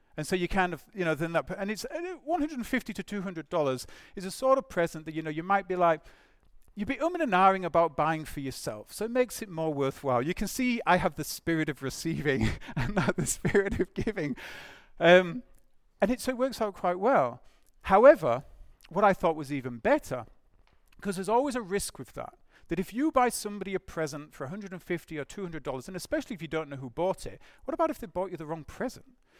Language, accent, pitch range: English, British, 160-230 Hz